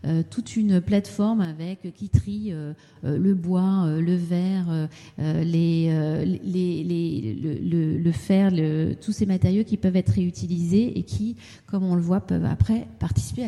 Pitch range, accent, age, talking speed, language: 165-205 Hz, French, 40-59, 185 wpm, French